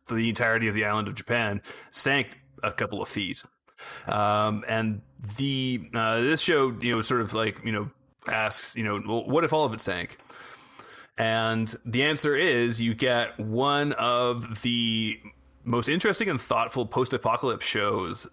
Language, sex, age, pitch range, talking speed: English, male, 30-49, 105-120 Hz, 165 wpm